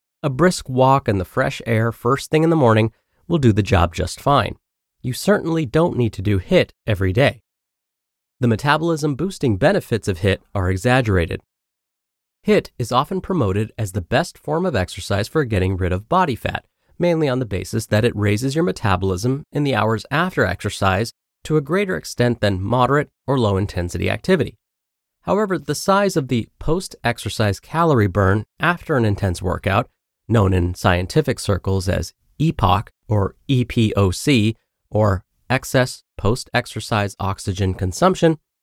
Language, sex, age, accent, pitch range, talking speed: English, male, 30-49, American, 100-145 Hz, 155 wpm